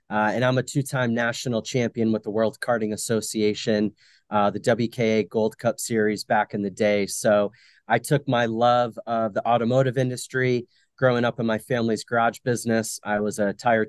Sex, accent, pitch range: male, American, 115-135 Hz